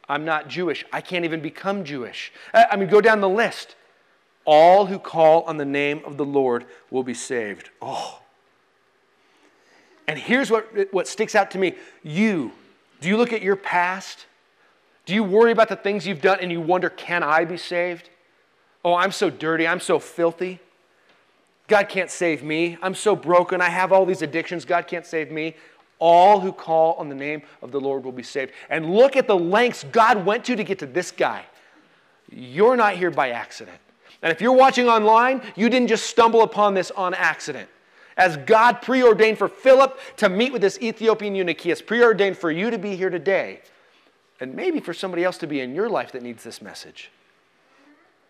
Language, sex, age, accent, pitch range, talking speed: English, male, 30-49, American, 165-220 Hz, 195 wpm